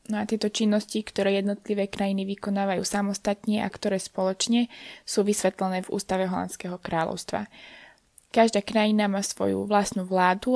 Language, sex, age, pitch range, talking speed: Slovak, female, 20-39, 190-210 Hz, 135 wpm